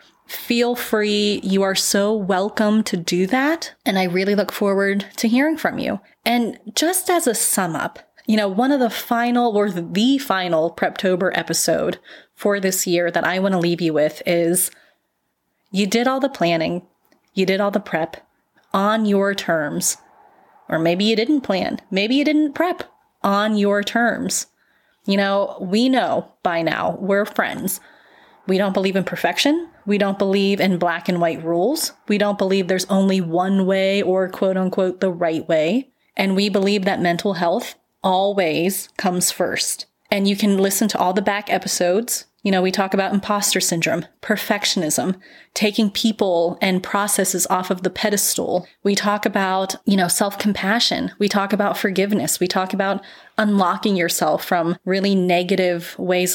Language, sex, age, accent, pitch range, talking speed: English, female, 30-49, American, 185-215 Hz, 170 wpm